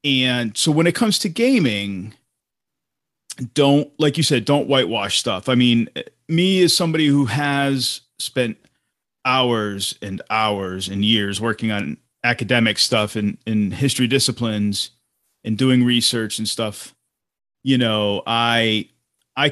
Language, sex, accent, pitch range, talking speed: English, male, American, 110-135 Hz, 135 wpm